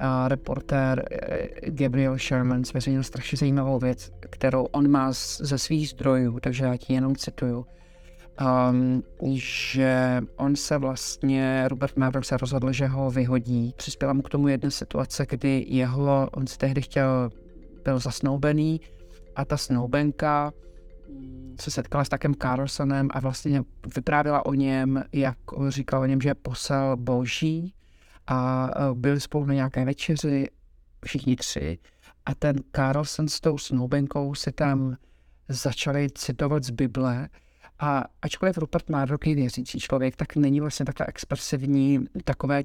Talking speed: 135 wpm